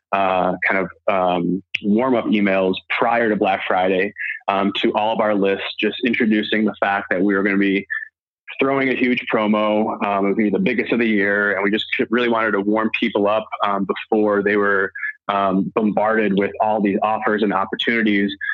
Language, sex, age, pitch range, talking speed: English, male, 20-39, 100-110 Hz, 195 wpm